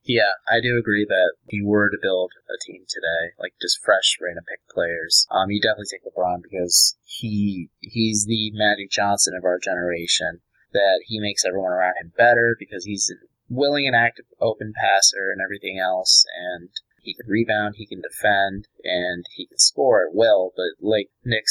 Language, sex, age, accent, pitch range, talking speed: English, male, 20-39, American, 95-110 Hz, 185 wpm